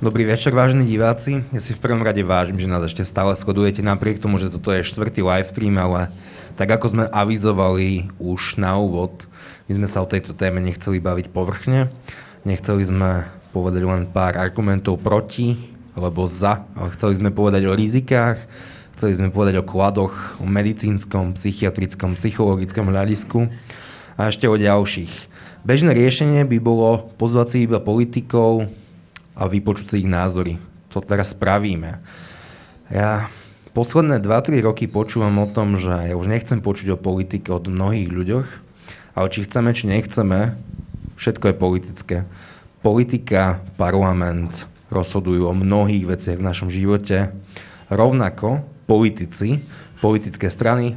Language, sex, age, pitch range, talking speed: Slovak, male, 20-39, 95-110 Hz, 140 wpm